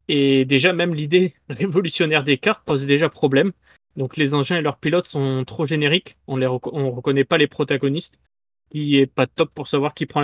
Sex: male